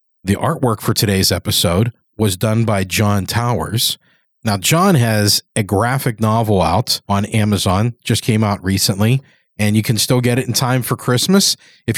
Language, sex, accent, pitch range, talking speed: English, male, American, 105-125 Hz, 170 wpm